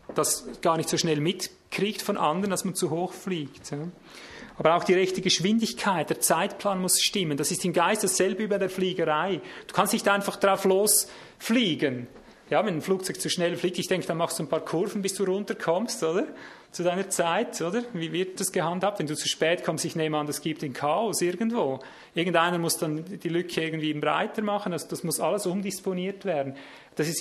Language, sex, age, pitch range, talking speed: German, male, 30-49, 165-195 Hz, 205 wpm